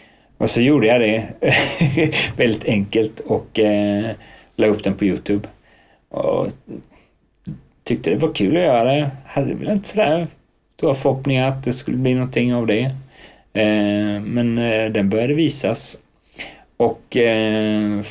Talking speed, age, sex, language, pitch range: 145 wpm, 30-49, male, Swedish, 90-115 Hz